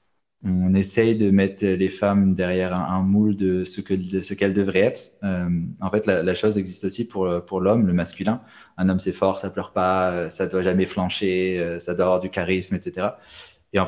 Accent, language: French, French